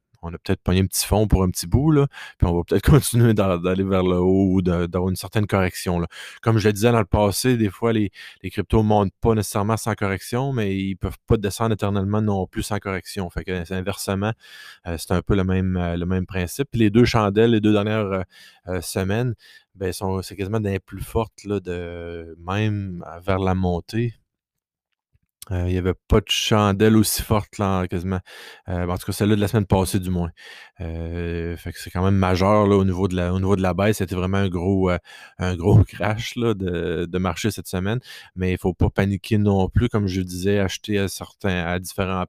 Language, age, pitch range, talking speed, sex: French, 20-39, 90-105 Hz, 220 wpm, male